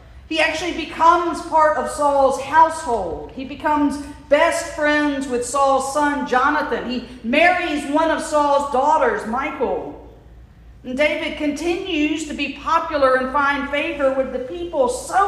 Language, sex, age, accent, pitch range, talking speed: English, female, 50-69, American, 255-310 Hz, 135 wpm